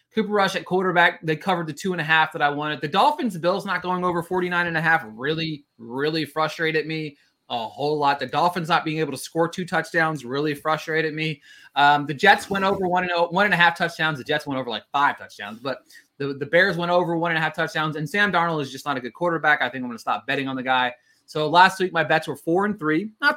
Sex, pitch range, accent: male, 145-185 Hz, American